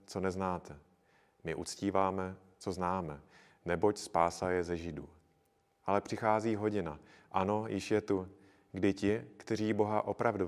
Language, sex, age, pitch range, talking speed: Czech, male, 30-49, 85-100 Hz, 130 wpm